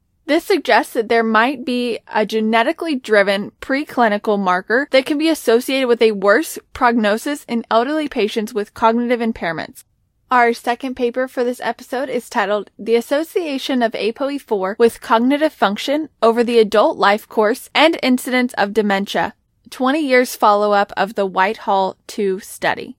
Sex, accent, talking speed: female, American, 150 wpm